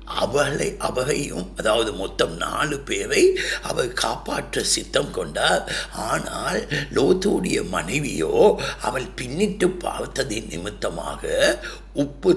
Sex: male